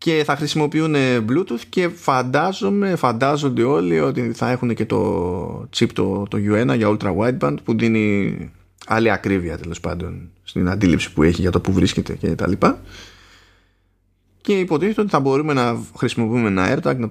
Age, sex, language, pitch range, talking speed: 20-39, male, Greek, 95-135 Hz, 165 wpm